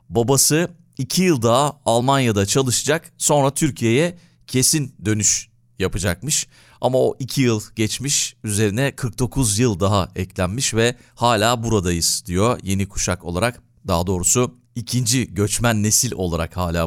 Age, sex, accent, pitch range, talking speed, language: 40-59, male, native, 95-125 Hz, 125 wpm, Turkish